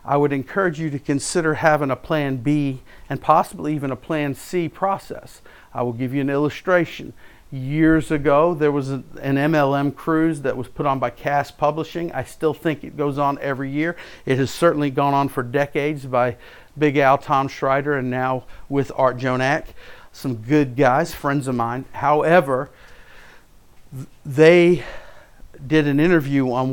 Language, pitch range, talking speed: English, 130-155 Hz, 165 wpm